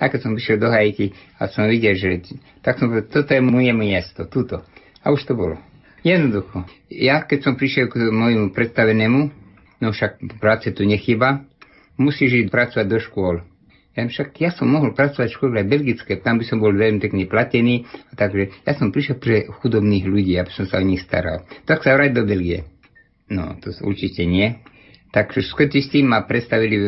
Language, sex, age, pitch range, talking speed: Slovak, male, 50-69, 100-130 Hz, 185 wpm